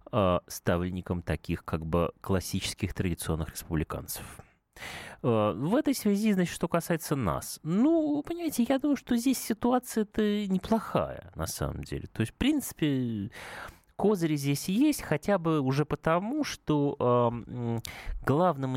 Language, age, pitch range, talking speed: Russian, 30-49, 100-160 Hz, 120 wpm